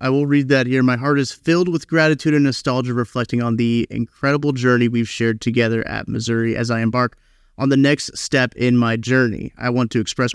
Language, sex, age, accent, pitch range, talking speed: English, male, 30-49, American, 115-145 Hz, 215 wpm